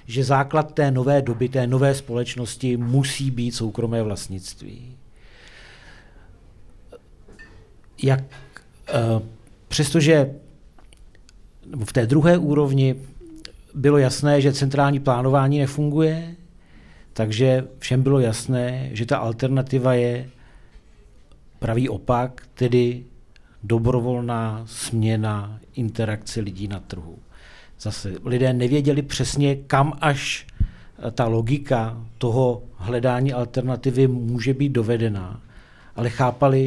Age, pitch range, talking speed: 50-69, 115-135 Hz, 95 wpm